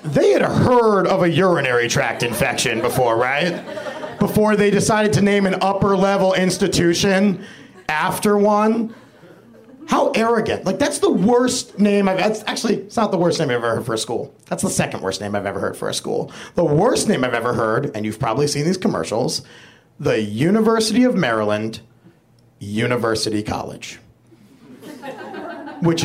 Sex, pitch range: male, 165-245 Hz